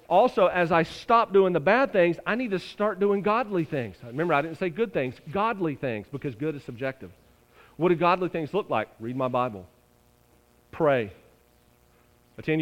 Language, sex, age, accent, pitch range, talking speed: English, male, 40-59, American, 135-220 Hz, 180 wpm